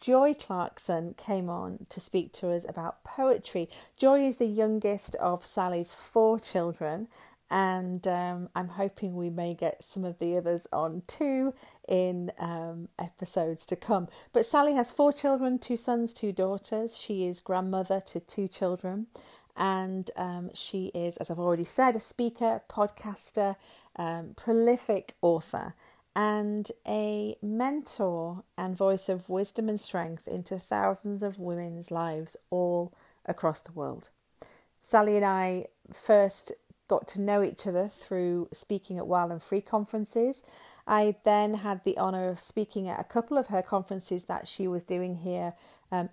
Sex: female